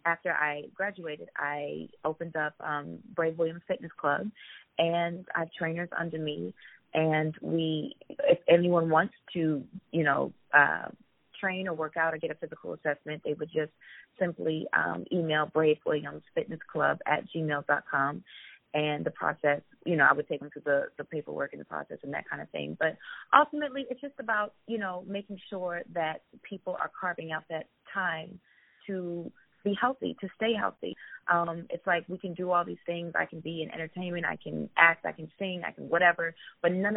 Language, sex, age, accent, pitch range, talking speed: English, female, 30-49, American, 155-180 Hz, 180 wpm